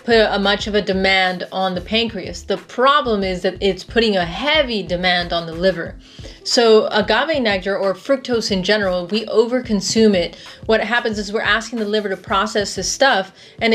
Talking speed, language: 190 wpm, English